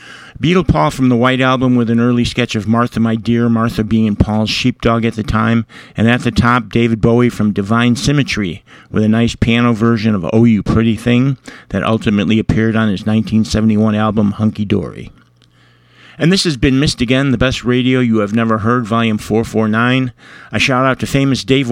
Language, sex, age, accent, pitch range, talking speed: English, male, 50-69, American, 110-125 Hz, 190 wpm